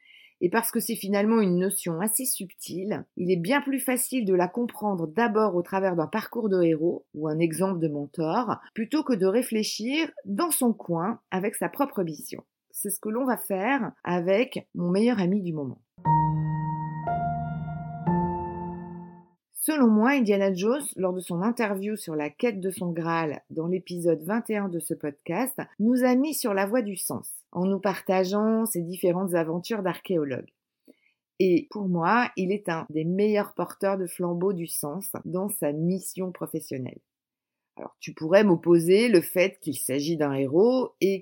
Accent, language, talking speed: French, French, 165 wpm